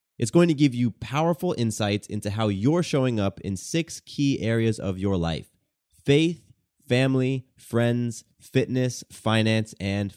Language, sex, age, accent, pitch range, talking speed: English, male, 30-49, American, 100-135 Hz, 150 wpm